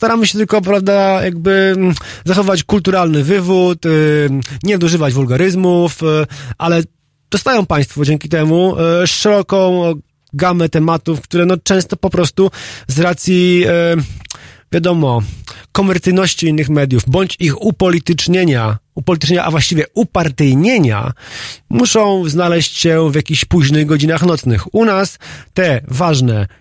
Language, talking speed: Polish, 110 wpm